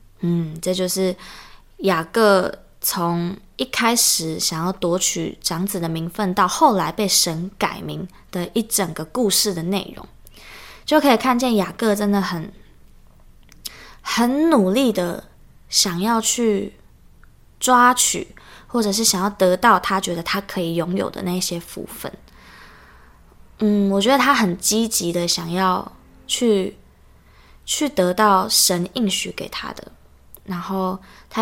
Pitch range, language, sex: 180-225 Hz, Chinese, female